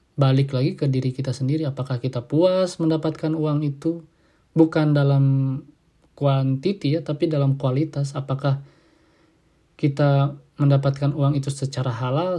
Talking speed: 125 wpm